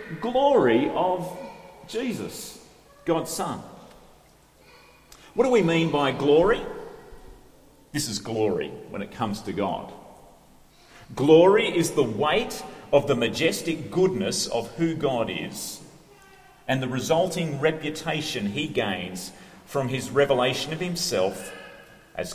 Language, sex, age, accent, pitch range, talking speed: English, male, 40-59, Australian, 130-190 Hz, 115 wpm